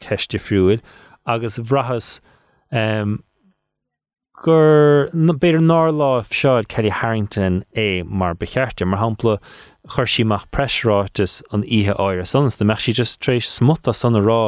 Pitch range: 100-120 Hz